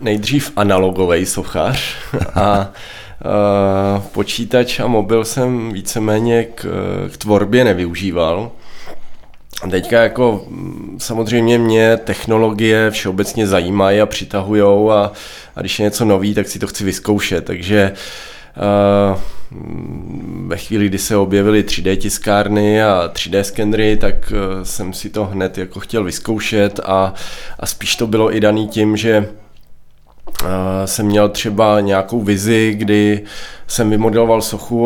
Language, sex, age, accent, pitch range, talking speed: Czech, male, 20-39, native, 100-115 Hz, 125 wpm